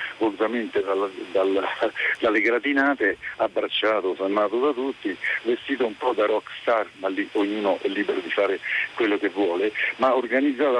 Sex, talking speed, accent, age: male, 140 wpm, native, 50-69